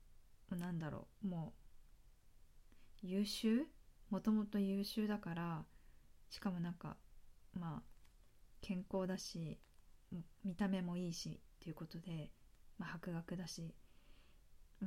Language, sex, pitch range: Japanese, female, 170-210 Hz